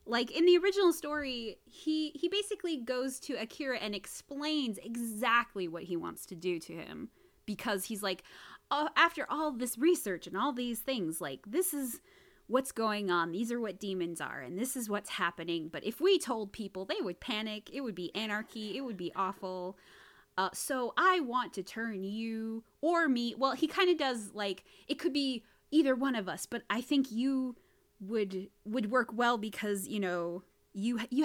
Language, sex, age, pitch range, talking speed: English, female, 20-39, 200-285 Hz, 190 wpm